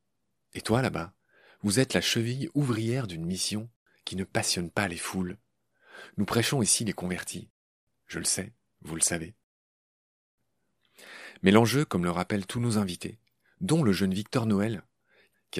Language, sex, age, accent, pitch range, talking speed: French, male, 40-59, French, 90-115 Hz, 160 wpm